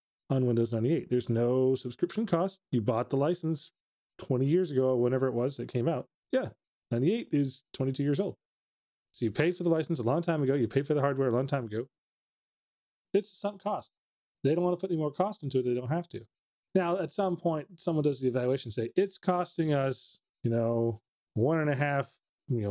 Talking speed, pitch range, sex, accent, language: 215 wpm, 120-160 Hz, male, American, English